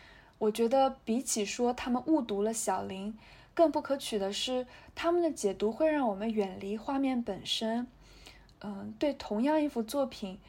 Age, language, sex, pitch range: 20-39, Chinese, female, 220-290 Hz